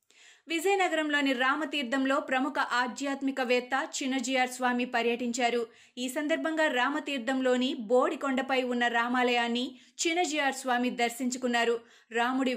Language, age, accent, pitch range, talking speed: Telugu, 20-39, native, 235-275 Hz, 80 wpm